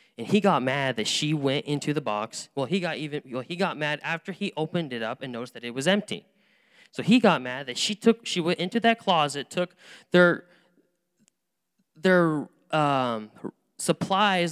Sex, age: male, 10-29